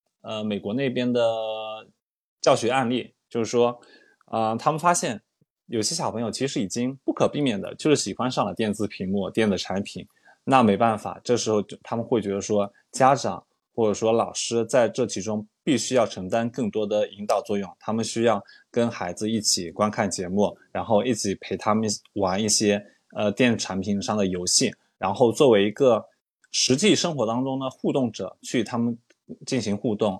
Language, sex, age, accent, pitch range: Chinese, male, 20-39, native, 100-120 Hz